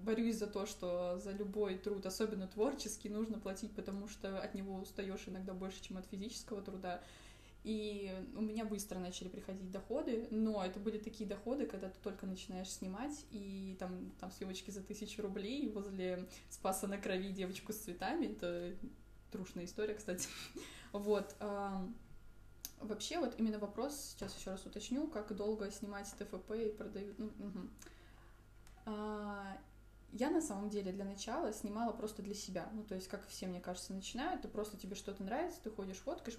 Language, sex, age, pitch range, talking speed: Russian, female, 20-39, 190-220 Hz, 165 wpm